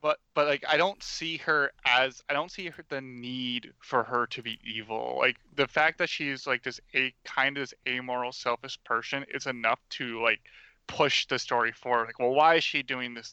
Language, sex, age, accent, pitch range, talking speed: English, male, 20-39, American, 120-140 Hz, 215 wpm